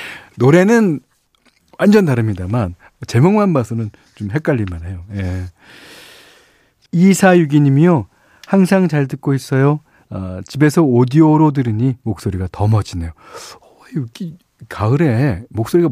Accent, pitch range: native, 105-155 Hz